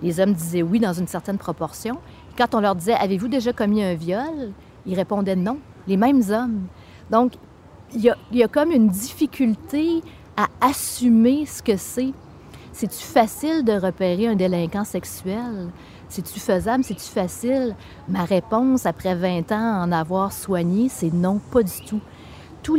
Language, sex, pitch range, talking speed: French, female, 190-235 Hz, 170 wpm